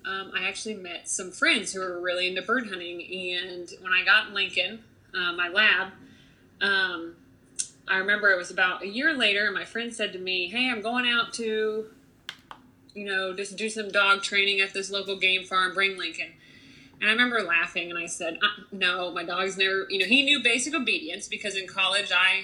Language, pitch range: English, 185-235 Hz